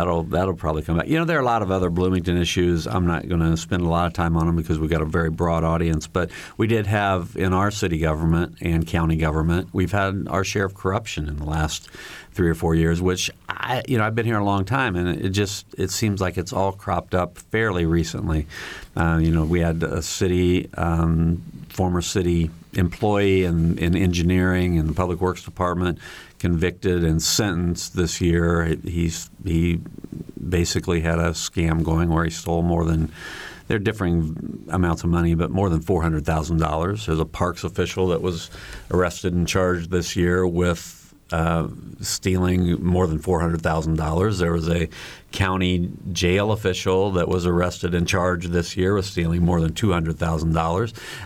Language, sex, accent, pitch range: English, male, American, 80-95 Hz